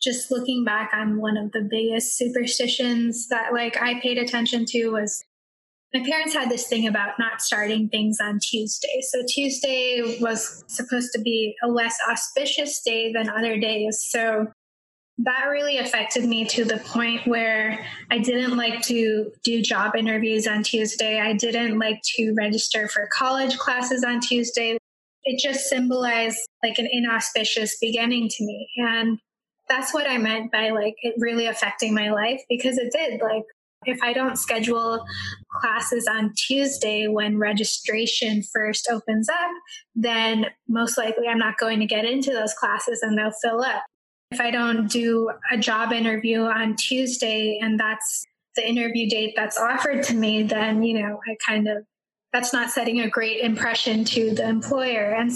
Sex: female